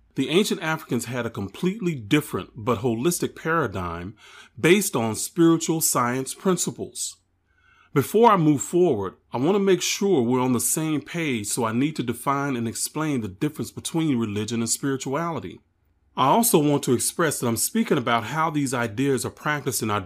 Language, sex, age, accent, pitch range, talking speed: English, male, 30-49, American, 110-155 Hz, 175 wpm